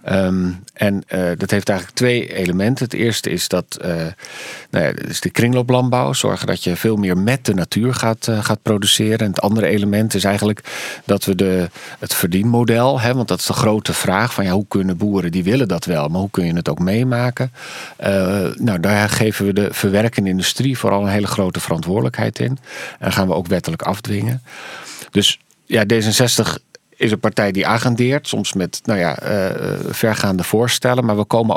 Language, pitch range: Dutch, 95-120 Hz